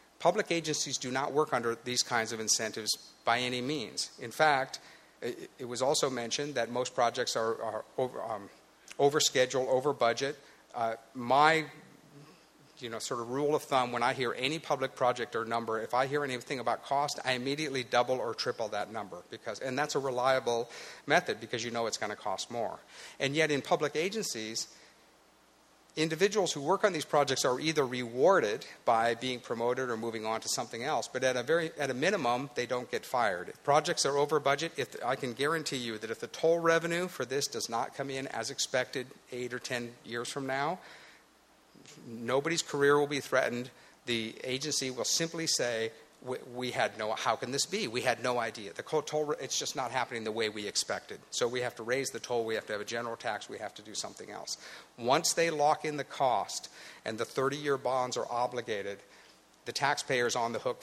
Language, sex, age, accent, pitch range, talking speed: English, male, 50-69, American, 120-150 Hz, 200 wpm